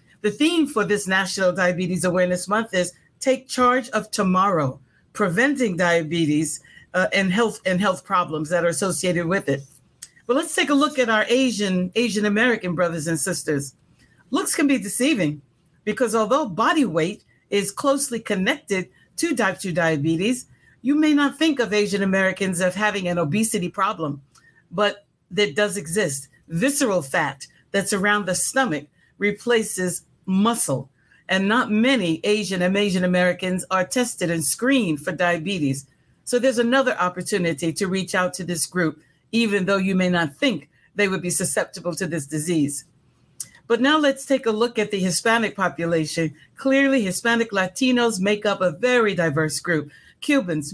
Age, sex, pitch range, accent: 50-69, female, 170-230 Hz, American